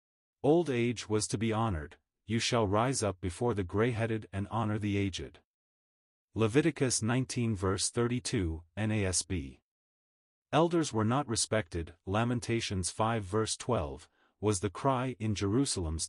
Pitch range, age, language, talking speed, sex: 95-120 Hz, 30-49, English, 130 wpm, male